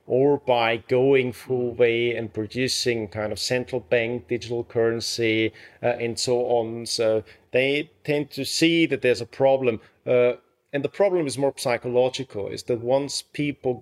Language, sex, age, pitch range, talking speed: English, male, 40-59, 110-130 Hz, 160 wpm